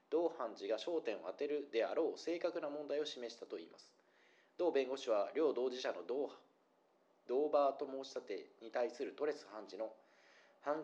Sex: male